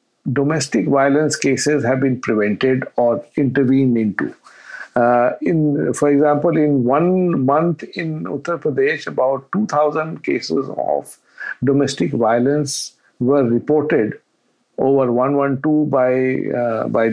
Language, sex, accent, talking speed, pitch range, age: English, male, Indian, 110 wpm, 130-155 Hz, 50-69